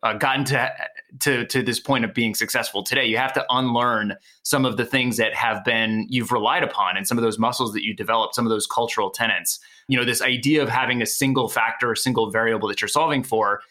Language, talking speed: English, 235 wpm